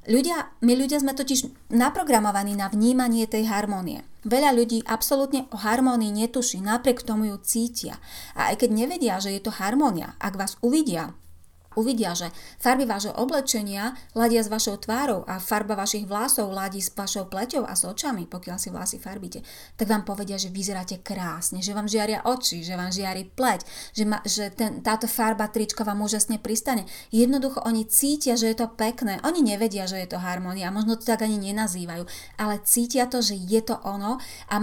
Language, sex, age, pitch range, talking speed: Slovak, female, 30-49, 200-245 Hz, 180 wpm